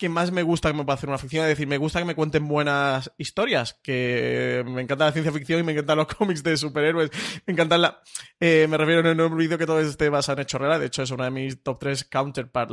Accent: Spanish